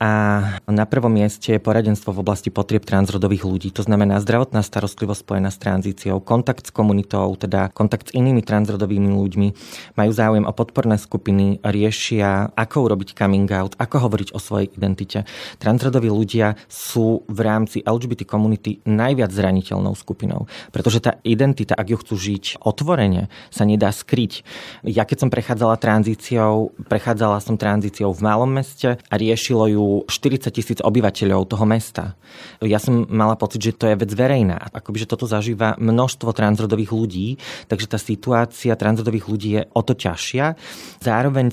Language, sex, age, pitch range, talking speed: Slovak, male, 30-49, 100-115 Hz, 155 wpm